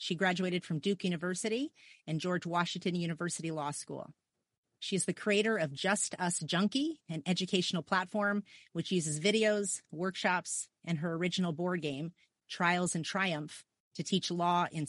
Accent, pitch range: American, 165-195 Hz